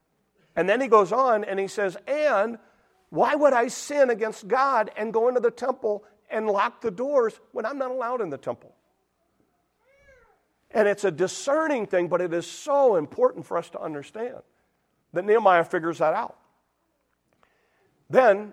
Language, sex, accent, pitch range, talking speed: English, male, American, 135-220 Hz, 165 wpm